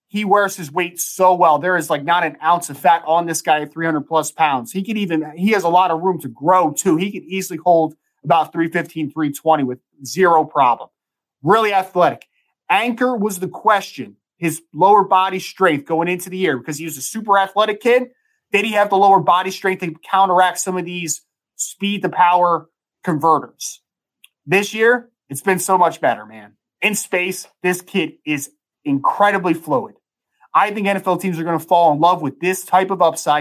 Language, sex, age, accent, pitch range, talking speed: English, male, 20-39, American, 165-205 Hz, 200 wpm